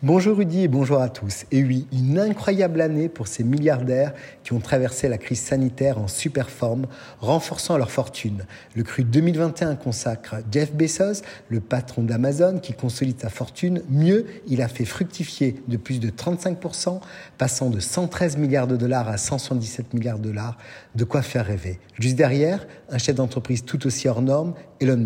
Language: Italian